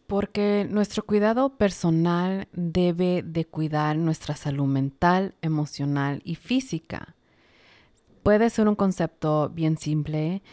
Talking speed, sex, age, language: 110 wpm, female, 30-49, Spanish